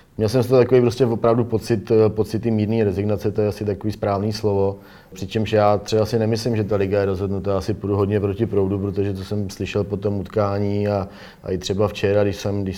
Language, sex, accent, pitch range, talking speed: Czech, male, native, 95-105 Hz, 215 wpm